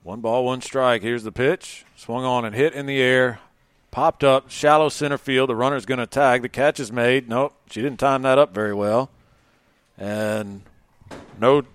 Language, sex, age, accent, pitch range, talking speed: English, male, 40-59, American, 115-145 Hz, 195 wpm